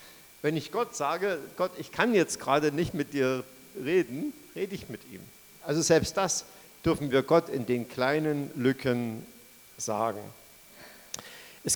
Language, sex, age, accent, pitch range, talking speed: German, male, 50-69, German, 125-165 Hz, 150 wpm